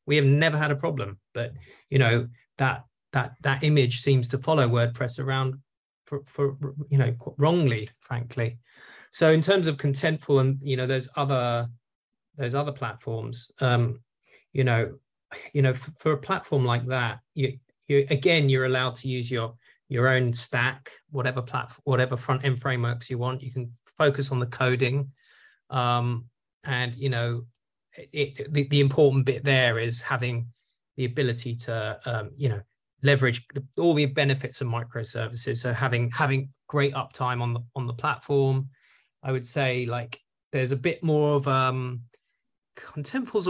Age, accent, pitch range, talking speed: 30-49, British, 120-140 Hz, 165 wpm